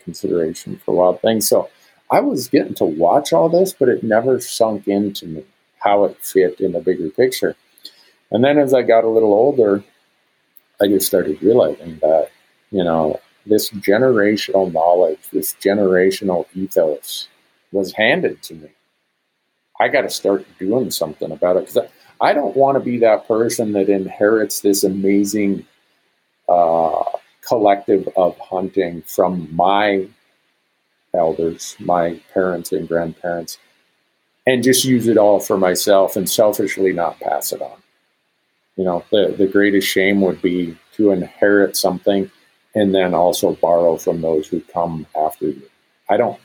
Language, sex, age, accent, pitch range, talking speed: English, male, 50-69, American, 90-105 Hz, 155 wpm